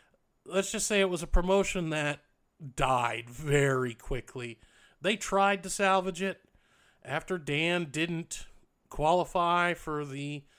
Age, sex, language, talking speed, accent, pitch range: 40-59, male, English, 125 wpm, American, 145-200 Hz